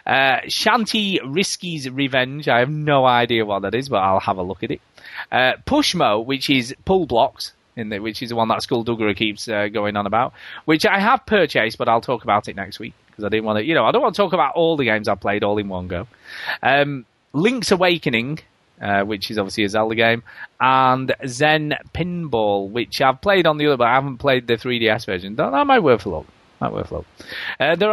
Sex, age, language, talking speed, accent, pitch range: male, 20-39, English, 230 wpm, British, 115-165 Hz